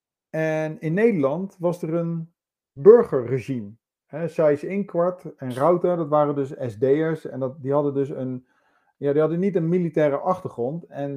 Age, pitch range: 50-69, 125-155 Hz